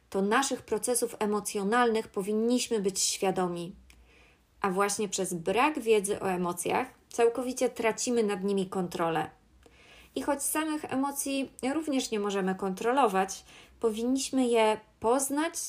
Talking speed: 115 wpm